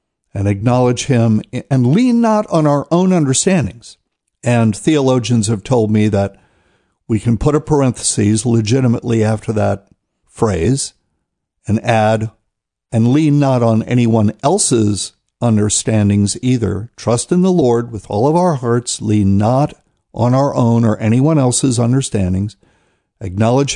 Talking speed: 135 wpm